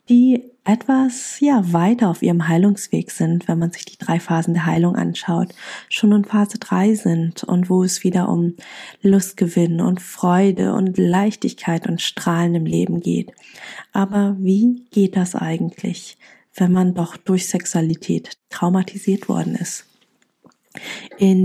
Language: German